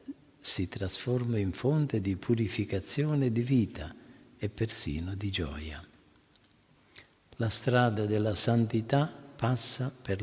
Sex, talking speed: male, 105 wpm